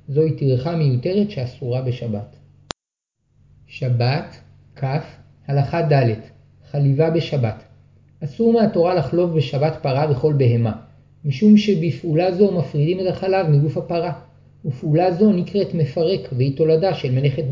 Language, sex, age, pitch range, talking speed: Hebrew, male, 50-69, 135-175 Hz, 115 wpm